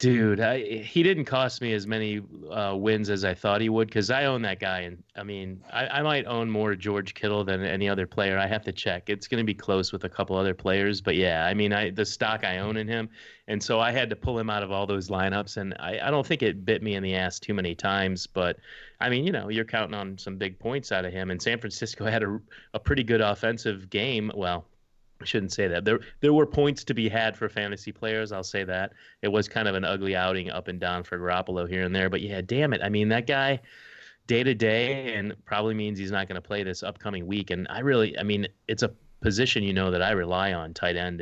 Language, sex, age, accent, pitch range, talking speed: English, male, 30-49, American, 95-110 Hz, 265 wpm